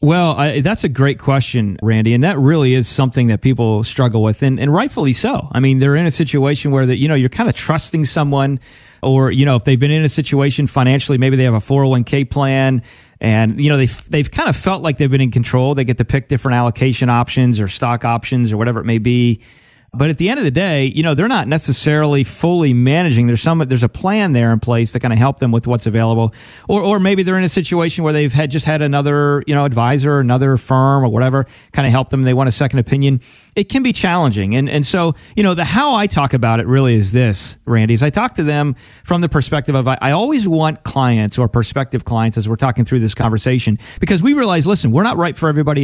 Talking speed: 245 wpm